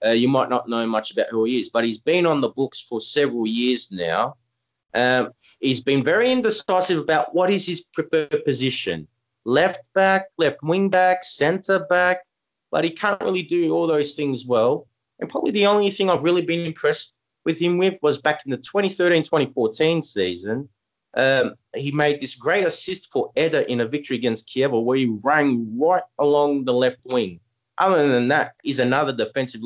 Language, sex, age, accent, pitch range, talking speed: English, male, 30-49, Australian, 125-175 Hz, 185 wpm